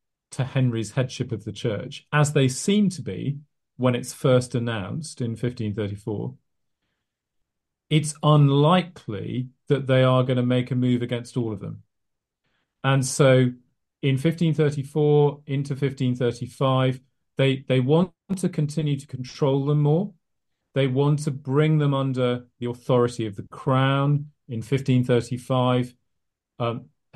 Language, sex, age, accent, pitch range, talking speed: English, male, 40-59, British, 120-145 Hz, 130 wpm